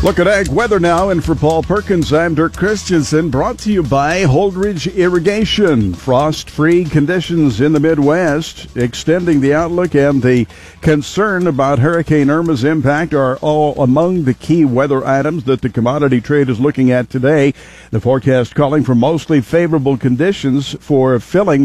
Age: 60-79